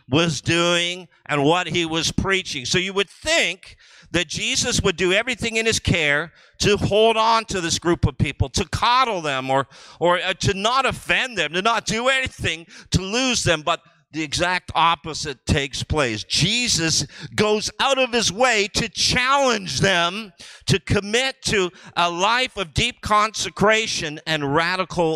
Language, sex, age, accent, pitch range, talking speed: English, male, 50-69, American, 140-200 Hz, 165 wpm